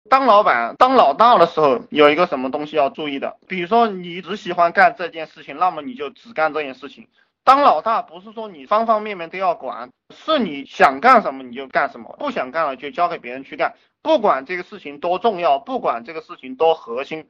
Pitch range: 150-240 Hz